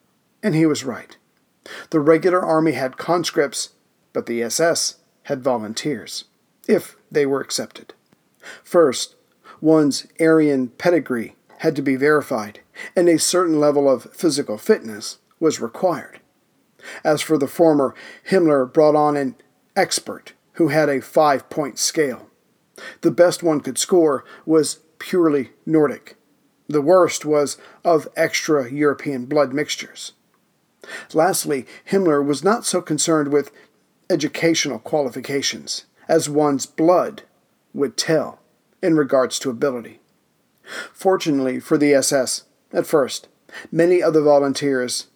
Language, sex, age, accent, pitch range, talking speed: English, male, 50-69, American, 140-165 Hz, 120 wpm